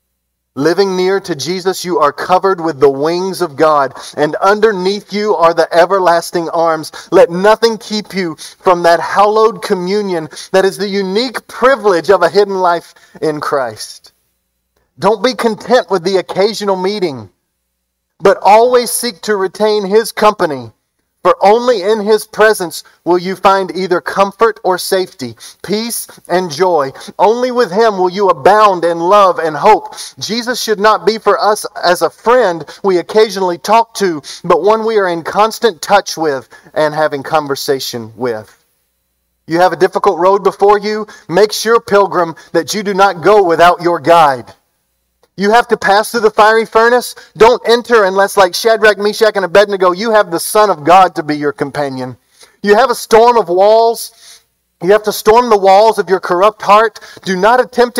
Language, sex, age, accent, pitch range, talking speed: English, male, 40-59, American, 170-215 Hz, 170 wpm